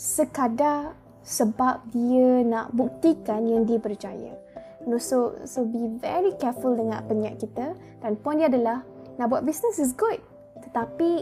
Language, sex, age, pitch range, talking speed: Malay, female, 20-39, 230-275 Hz, 145 wpm